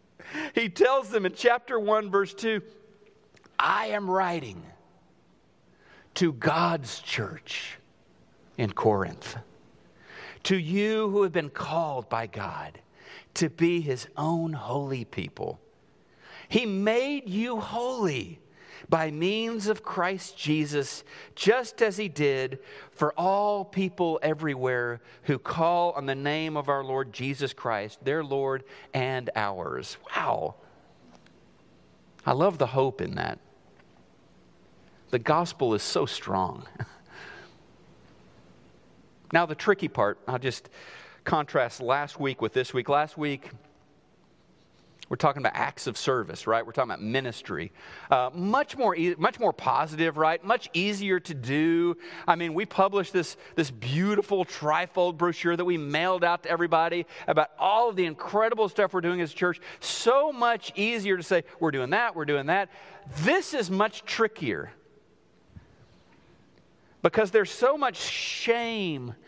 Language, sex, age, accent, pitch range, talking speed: English, male, 50-69, American, 140-200 Hz, 135 wpm